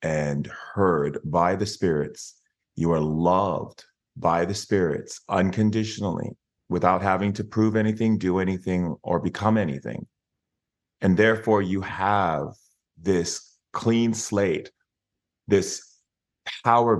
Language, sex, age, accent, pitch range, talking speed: English, male, 30-49, American, 80-105 Hz, 110 wpm